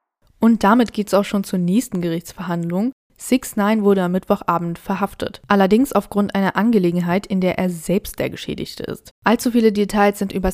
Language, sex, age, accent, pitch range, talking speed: German, female, 20-39, German, 180-210 Hz, 175 wpm